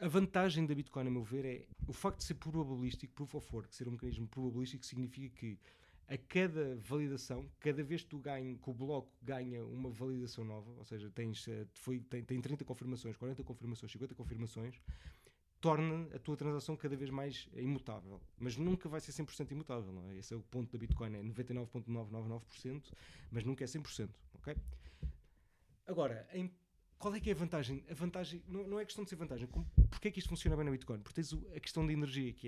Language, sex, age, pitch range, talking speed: Portuguese, male, 20-39, 120-150 Hz, 205 wpm